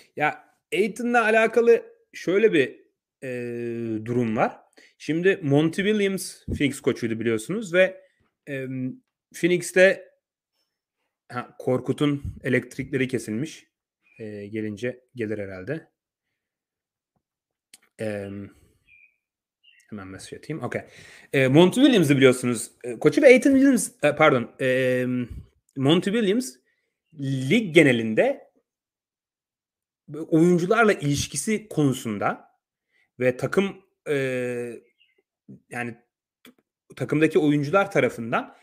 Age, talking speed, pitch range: 30-49, 85 wpm, 120-190 Hz